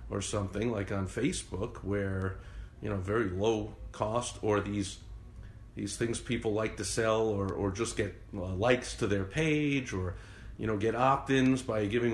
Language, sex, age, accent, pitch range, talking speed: English, male, 50-69, American, 100-115 Hz, 175 wpm